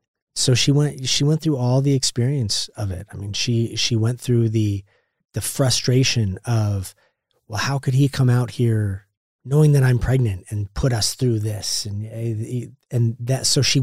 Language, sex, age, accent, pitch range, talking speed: English, male, 30-49, American, 105-125 Hz, 180 wpm